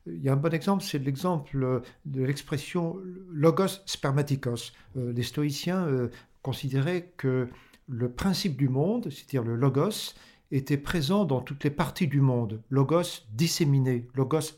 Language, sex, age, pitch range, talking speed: French, male, 50-69, 130-170 Hz, 150 wpm